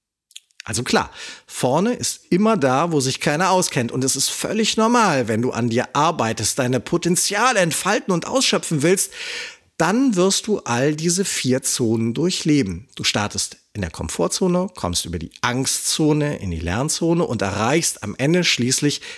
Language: German